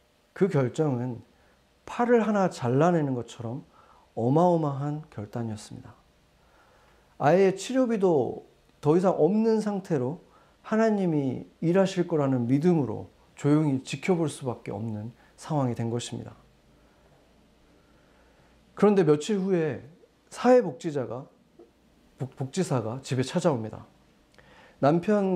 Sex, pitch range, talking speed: male, 125-180 Hz, 80 wpm